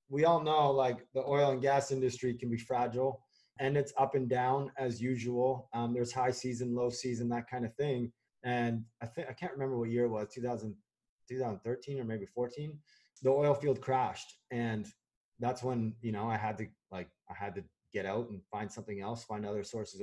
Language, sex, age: English, male, 20-39